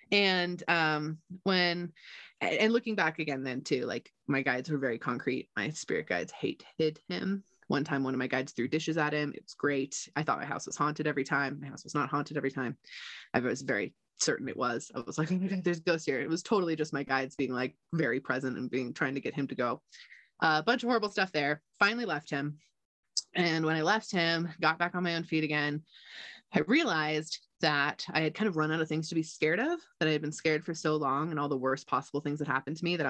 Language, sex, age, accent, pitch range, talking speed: English, female, 20-39, American, 145-190 Hz, 250 wpm